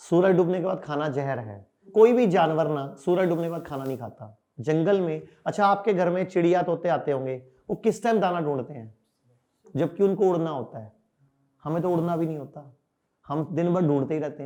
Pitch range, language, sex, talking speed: 150-190 Hz, Hindi, male, 210 wpm